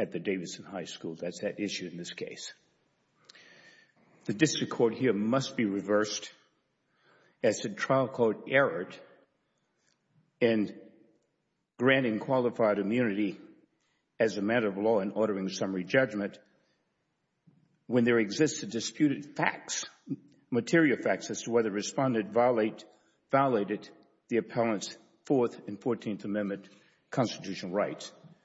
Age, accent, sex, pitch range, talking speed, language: 60-79, American, male, 105-135 Hz, 125 wpm, English